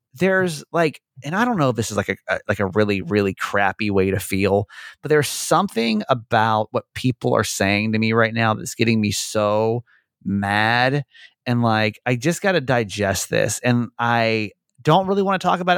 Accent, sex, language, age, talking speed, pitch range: American, male, English, 30-49, 200 wpm, 105-140 Hz